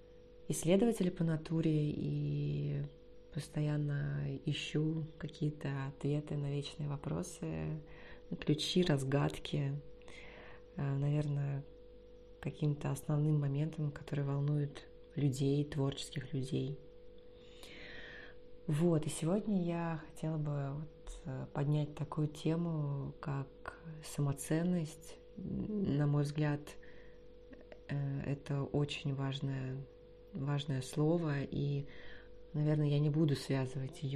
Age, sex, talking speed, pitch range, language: 20-39, female, 85 wpm, 135-155 Hz, Russian